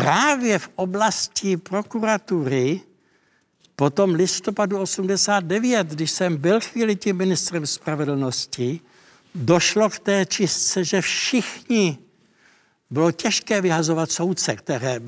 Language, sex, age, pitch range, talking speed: Czech, male, 60-79, 145-195 Hz, 100 wpm